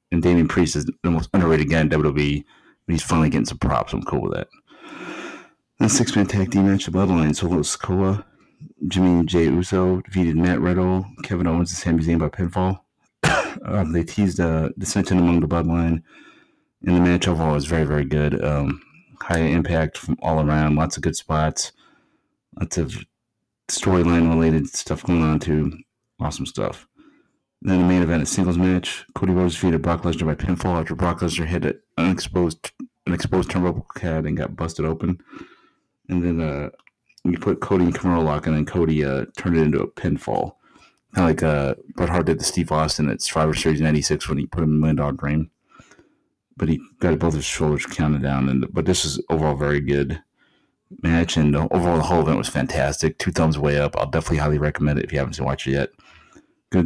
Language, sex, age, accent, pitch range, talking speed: English, male, 30-49, American, 75-90 Hz, 200 wpm